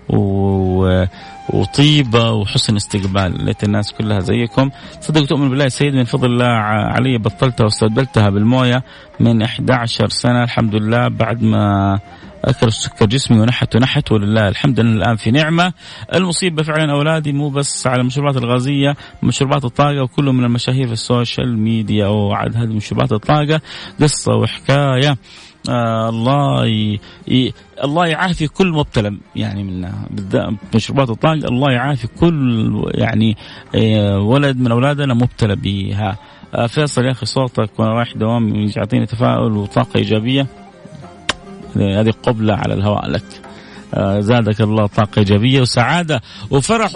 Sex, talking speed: male, 130 wpm